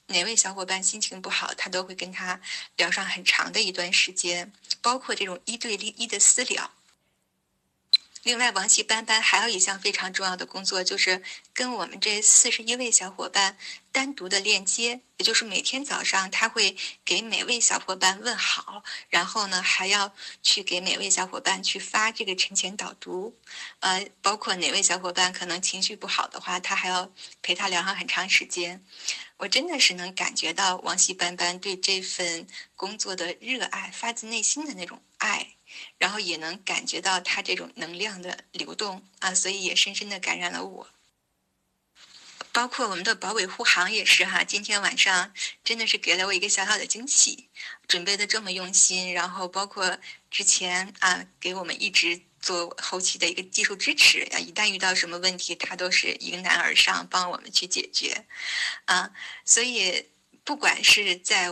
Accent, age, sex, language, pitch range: native, 10-29, female, Chinese, 185-215 Hz